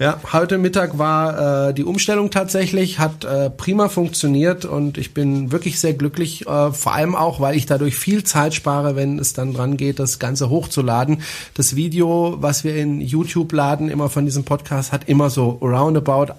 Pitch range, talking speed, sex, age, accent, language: 140-185 Hz, 185 wpm, male, 40-59, German, German